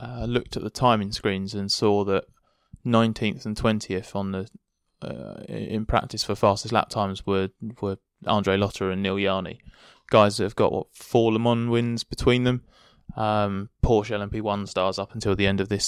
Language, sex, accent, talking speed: English, male, British, 185 wpm